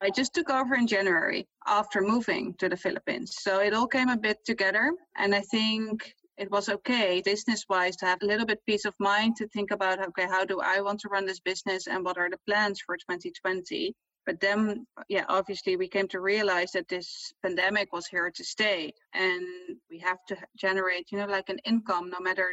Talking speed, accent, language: 210 wpm, Dutch, English